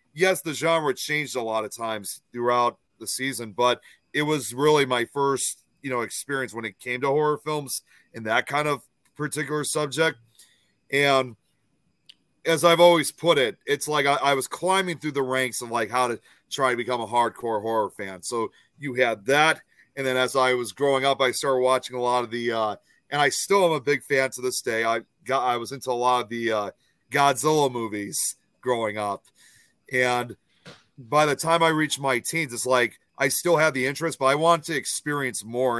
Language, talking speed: English, 205 wpm